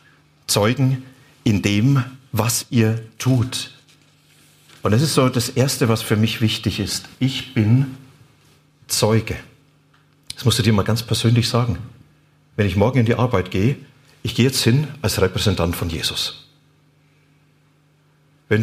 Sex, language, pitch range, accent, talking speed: male, German, 110-145 Hz, German, 140 wpm